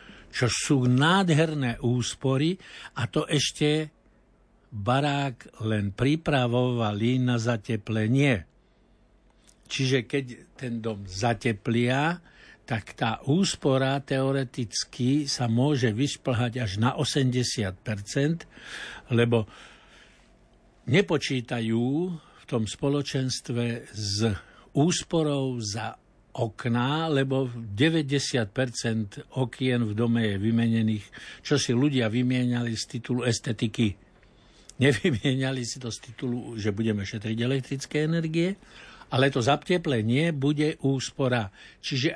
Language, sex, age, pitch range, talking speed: Slovak, male, 60-79, 115-140 Hz, 95 wpm